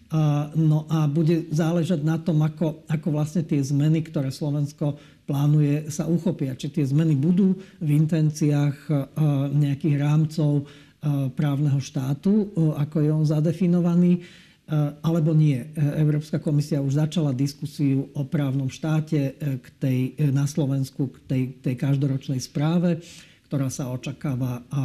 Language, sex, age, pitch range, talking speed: Slovak, male, 50-69, 140-160 Hz, 125 wpm